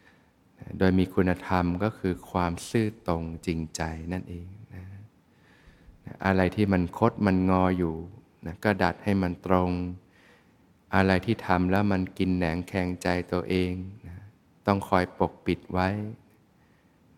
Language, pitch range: Thai, 85-105 Hz